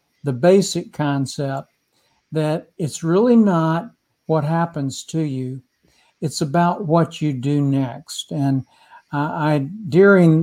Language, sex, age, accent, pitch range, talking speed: English, male, 60-79, American, 140-165 Hz, 120 wpm